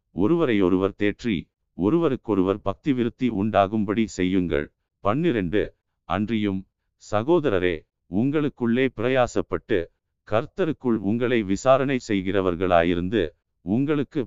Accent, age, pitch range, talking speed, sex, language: native, 50-69, 95-125 Hz, 70 wpm, male, Tamil